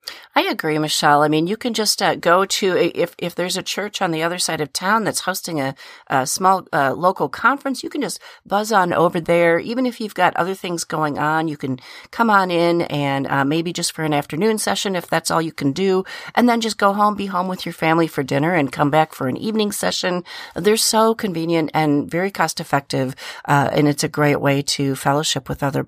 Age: 40-59